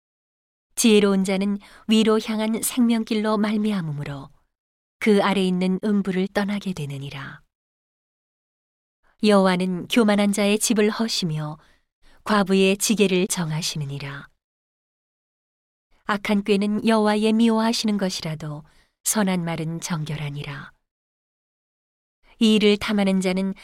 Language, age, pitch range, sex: Korean, 40-59, 165-210 Hz, female